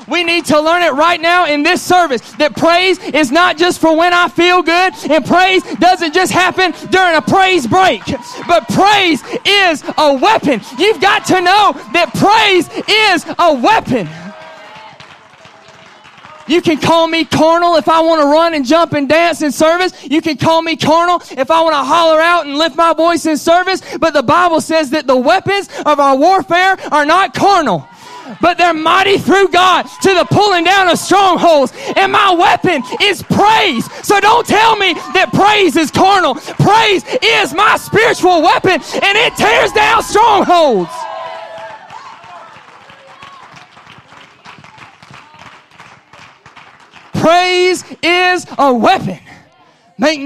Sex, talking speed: male, 155 wpm